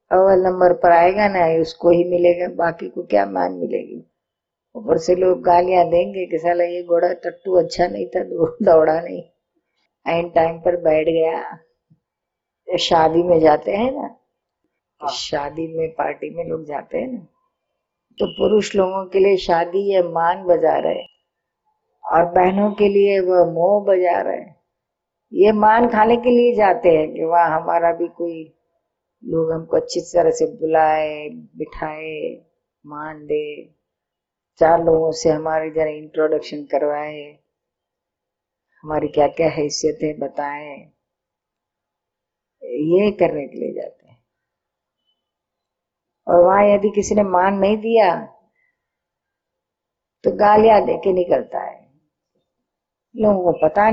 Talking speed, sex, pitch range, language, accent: 135 wpm, female, 160-190 Hz, Hindi, native